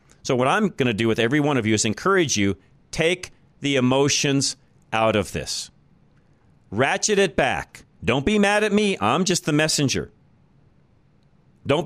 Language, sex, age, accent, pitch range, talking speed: English, male, 40-59, American, 115-160 Hz, 165 wpm